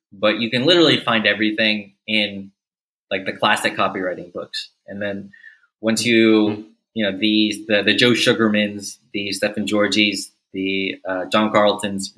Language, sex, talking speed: English, male, 155 wpm